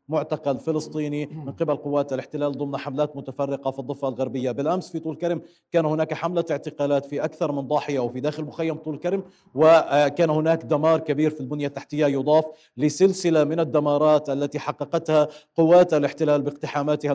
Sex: male